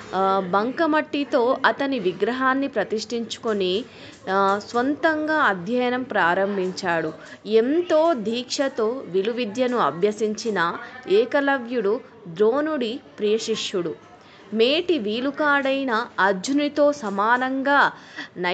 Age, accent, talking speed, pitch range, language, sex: 20-39, Indian, 60 wpm, 205-280 Hz, English, female